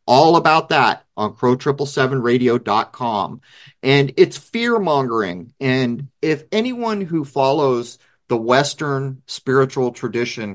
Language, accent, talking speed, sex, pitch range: English, American, 95 wpm, male, 120-150 Hz